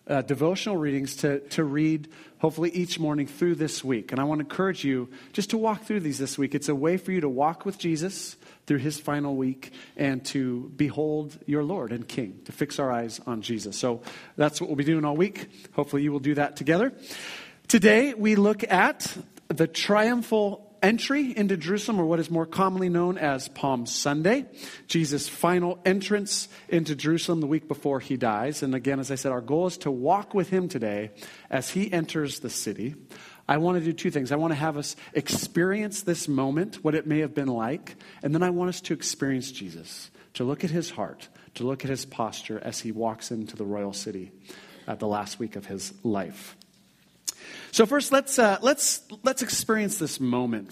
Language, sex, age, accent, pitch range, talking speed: English, male, 40-59, American, 135-190 Hz, 205 wpm